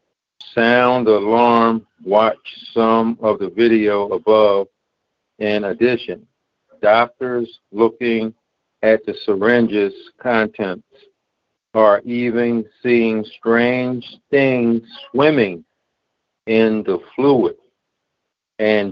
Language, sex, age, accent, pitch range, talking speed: English, male, 50-69, American, 110-120 Hz, 80 wpm